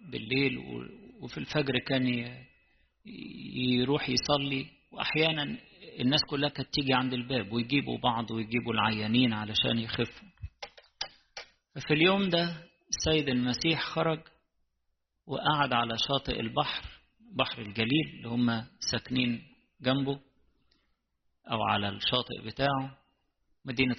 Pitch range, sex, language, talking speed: 115-140 Hz, male, English, 100 wpm